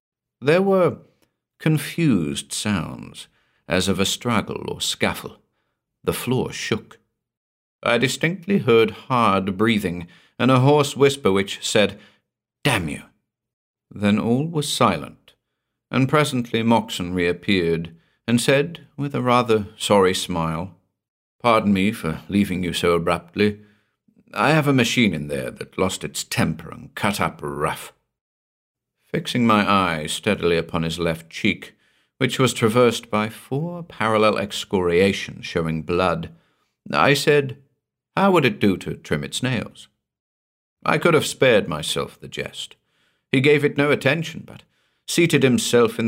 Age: 50-69